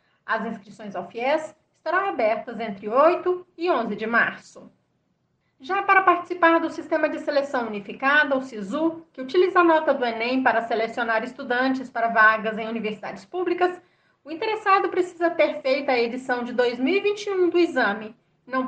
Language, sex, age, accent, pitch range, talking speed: Portuguese, female, 30-49, Brazilian, 220-320 Hz, 155 wpm